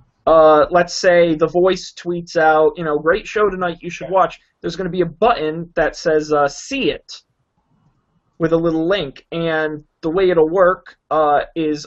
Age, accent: 30-49, American